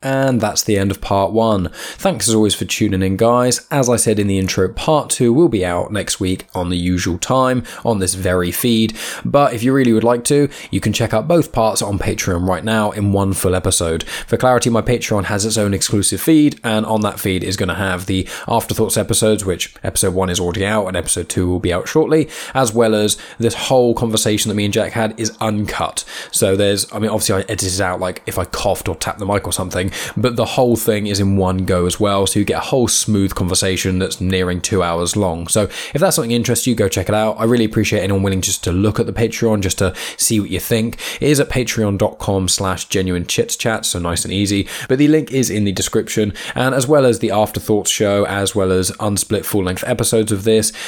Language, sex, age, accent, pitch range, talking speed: English, male, 10-29, British, 95-115 Hz, 240 wpm